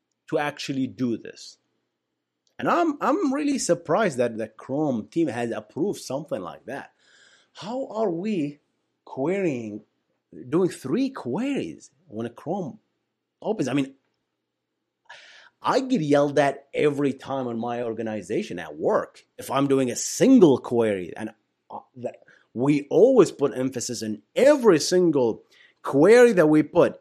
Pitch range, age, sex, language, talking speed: 120-185 Hz, 30-49, male, English, 140 wpm